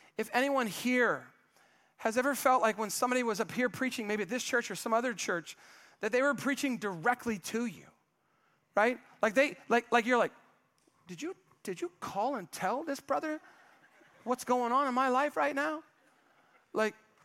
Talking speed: 185 wpm